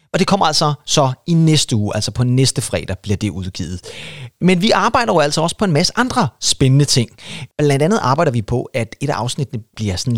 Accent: native